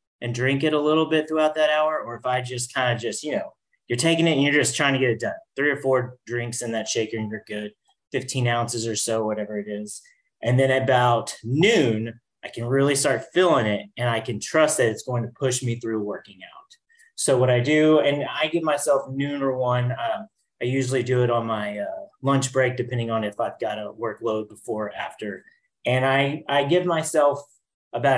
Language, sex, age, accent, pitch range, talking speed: English, male, 30-49, American, 120-155 Hz, 225 wpm